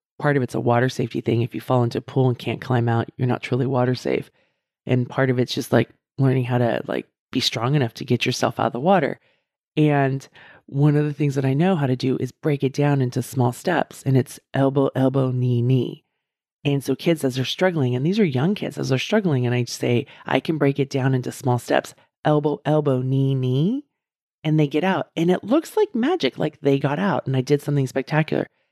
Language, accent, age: English, American, 30-49